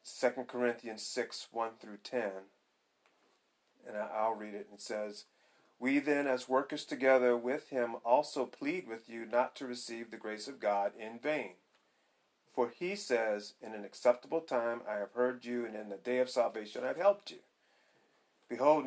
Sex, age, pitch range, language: male, 40-59, 115-155 Hz, English